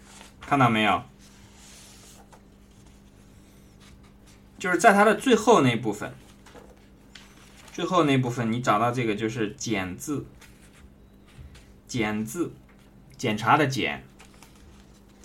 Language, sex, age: Chinese, male, 20-39